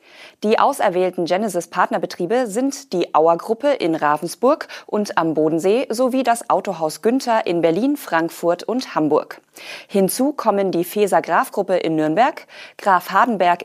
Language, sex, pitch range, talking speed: German, female, 170-230 Hz, 130 wpm